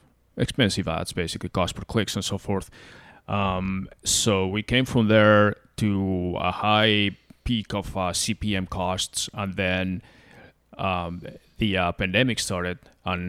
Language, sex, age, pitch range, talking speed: English, male, 20-39, 90-105 Hz, 140 wpm